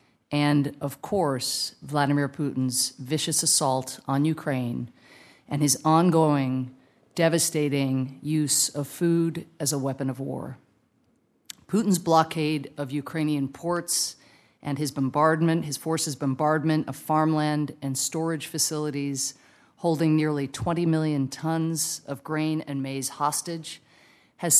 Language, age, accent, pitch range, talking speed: English, 40-59, American, 140-165 Hz, 115 wpm